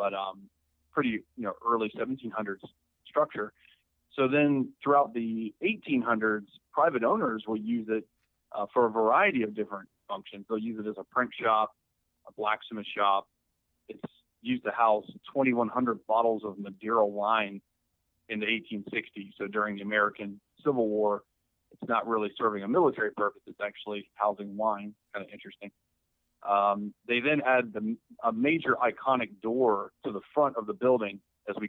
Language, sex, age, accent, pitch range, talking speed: English, male, 30-49, American, 100-115 Hz, 160 wpm